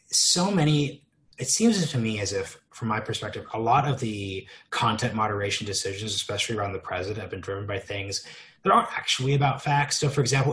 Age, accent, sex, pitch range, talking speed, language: 20-39, American, male, 100-125 Hz, 200 wpm, English